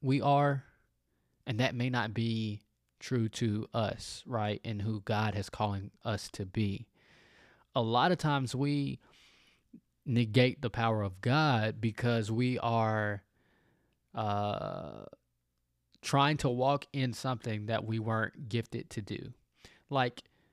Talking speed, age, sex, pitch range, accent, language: 130 wpm, 20-39, male, 105-140 Hz, American, English